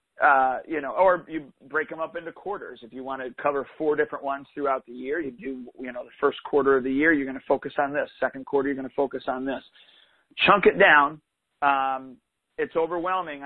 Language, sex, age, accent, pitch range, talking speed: English, male, 40-59, American, 130-155 Hz, 230 wpm